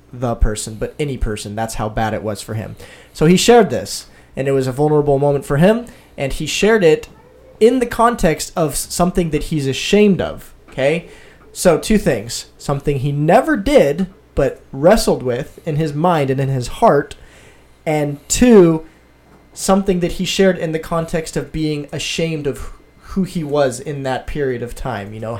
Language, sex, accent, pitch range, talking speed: English, male, American, 130-175 Hz, 185 wpm